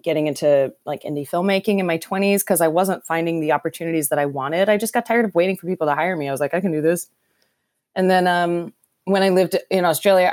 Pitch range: 150-190 Hz